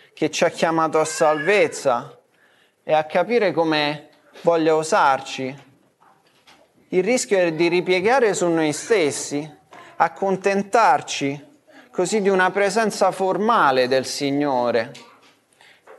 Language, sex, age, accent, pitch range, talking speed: Italian, male, 20-39, native, 155-205 Hz, 105 wpm